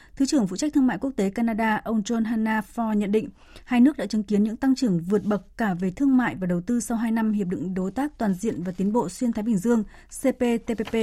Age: 20-39